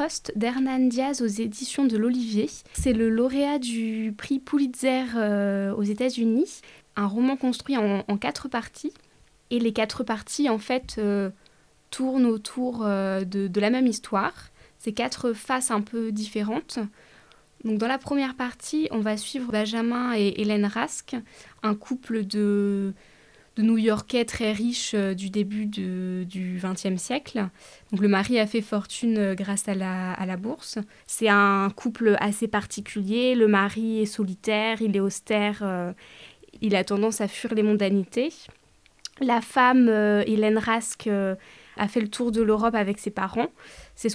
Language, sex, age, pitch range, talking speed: French, female, 20-39, 205-240 Hz, 160 wpm